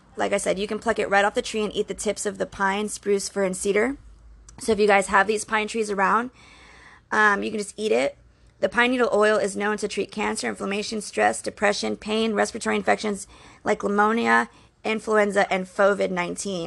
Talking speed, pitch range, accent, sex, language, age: 205 wpm, 195-225 Hz, American, female, English, 20-39